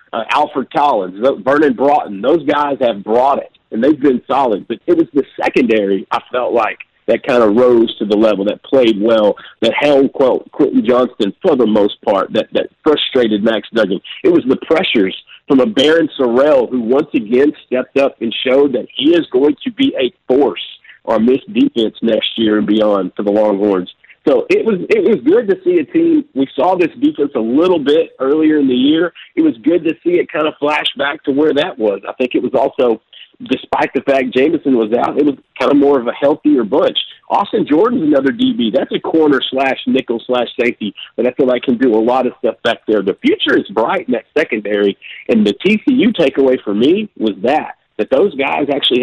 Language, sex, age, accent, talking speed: English, male, 50-69, American, 215 wpm